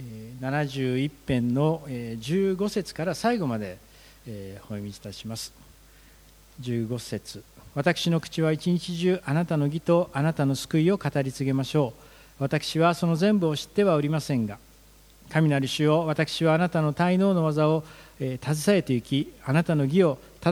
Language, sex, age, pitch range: Japanese, male, 40-59, 135-165 Hz